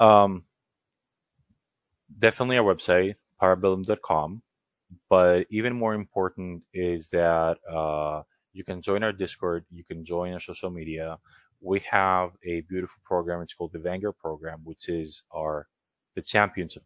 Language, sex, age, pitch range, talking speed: English, male, 20-39, 85-100 Hz, 140 wpm